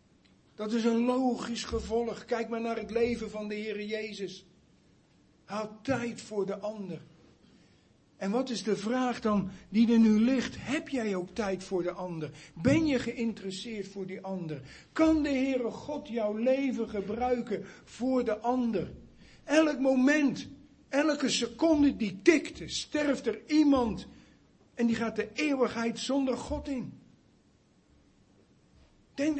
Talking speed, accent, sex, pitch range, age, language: 145 wpm, Dutch, male, 210-280 Hz, 50-69, Dutch